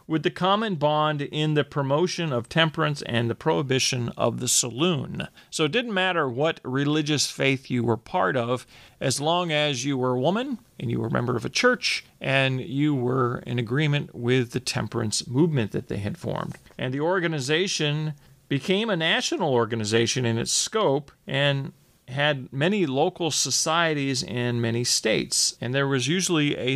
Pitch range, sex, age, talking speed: 120-155 Hz, male, 40-59, 175 wpm